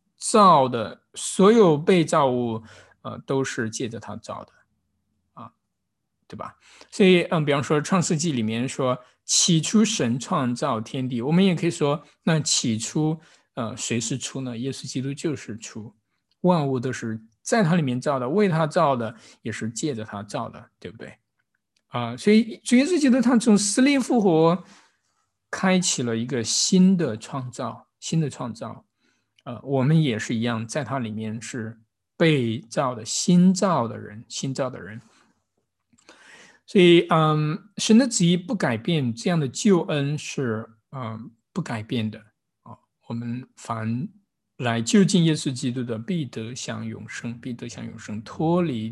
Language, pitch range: Chinese, 115-175 Hz